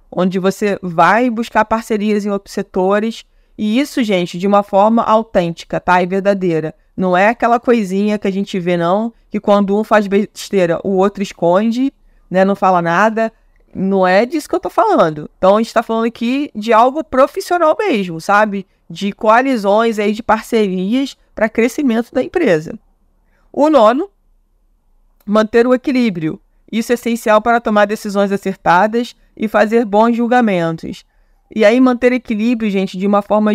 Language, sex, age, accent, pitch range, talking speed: Portuguese, female, 20-39, Brazilian, 185-230 Hz, 165 wpm